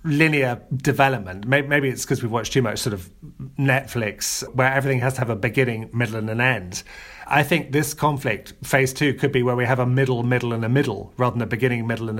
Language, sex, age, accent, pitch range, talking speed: English, male, 30-49, British, 120-145 Hz, 225 wpm